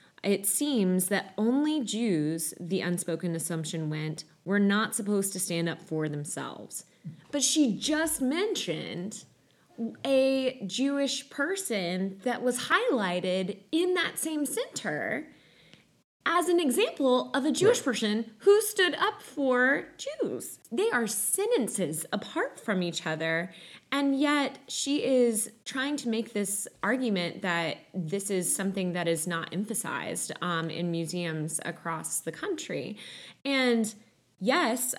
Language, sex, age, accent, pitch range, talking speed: English, female, 20-39, American, 175-260 Hz, 130 wpm